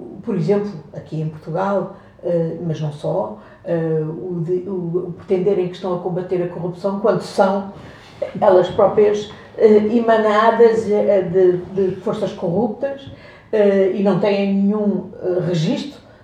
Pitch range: 170-215 Hz